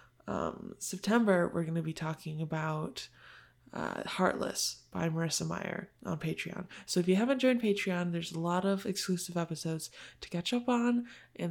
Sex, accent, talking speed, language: female, American, 165 wpm, English